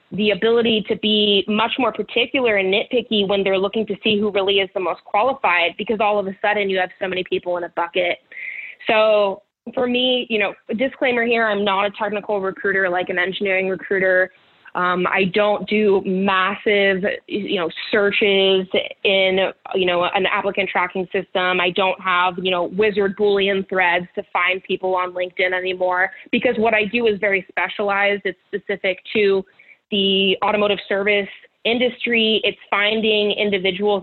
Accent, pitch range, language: American, 185-210 Hz, English